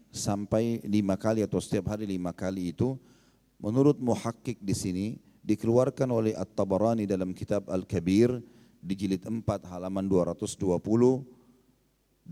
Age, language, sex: 40-59, Indonesian, male